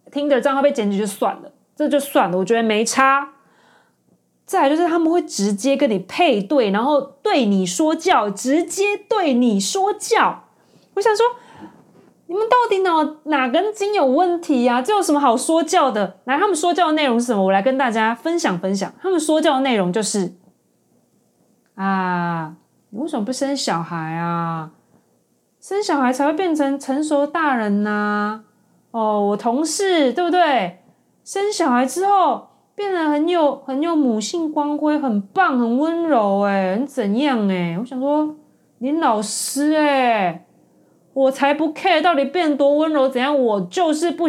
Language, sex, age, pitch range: Chinese, female, 30-49, 210-310 Hz